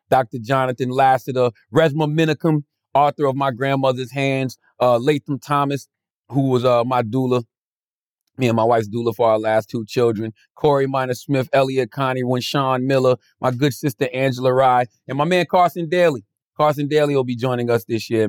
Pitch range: 120-145 Hz